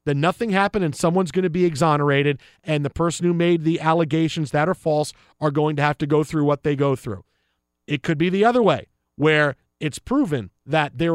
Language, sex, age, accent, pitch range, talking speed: English, male, 40-59, American, 155-230 Hz, 220 wpm